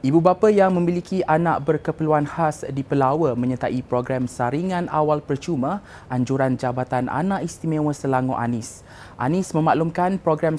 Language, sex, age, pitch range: Malay, male, 20-39, 130-170 Hz